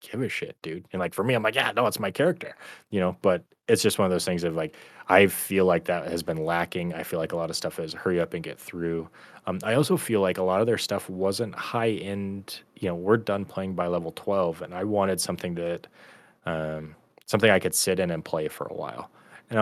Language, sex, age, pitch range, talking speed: English, male, 20-39, 85-95 Hz, 255 wpm